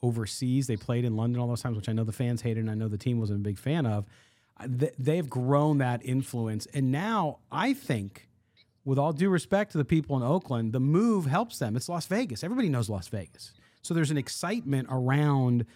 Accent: American